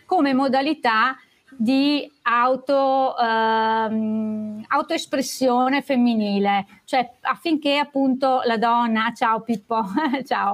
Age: 30-49